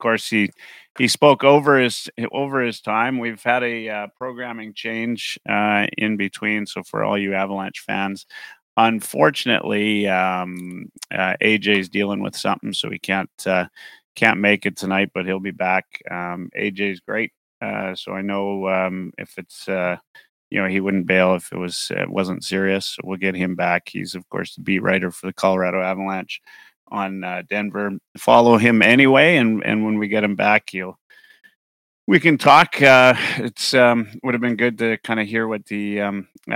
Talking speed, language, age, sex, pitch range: 185 wpm, English, 30-49, male, 95-115 Hz